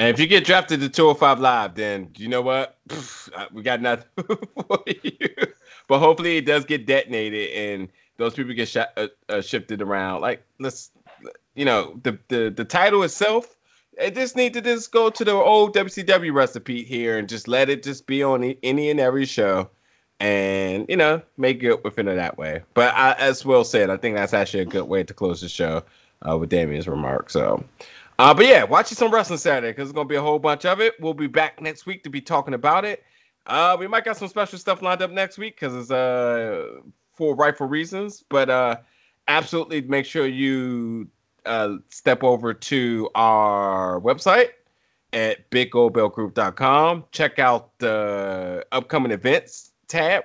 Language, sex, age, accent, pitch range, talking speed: English, male, 30-49, American, 115-180 Hz, 190 wpm